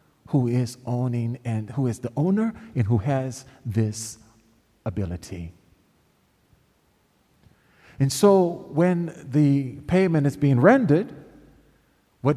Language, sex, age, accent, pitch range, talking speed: English, male, 40-59, American, 145-190 Hz, 105 wpm